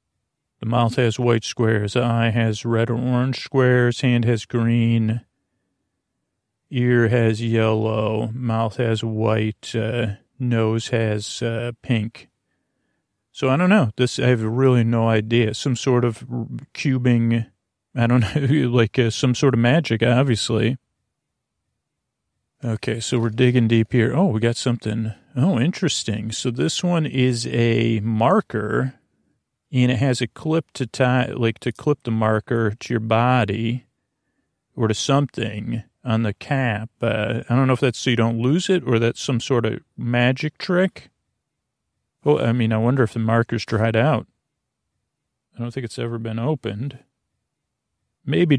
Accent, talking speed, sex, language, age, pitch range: American, 155 wpm, male, English, 40-59, 110-125 Hz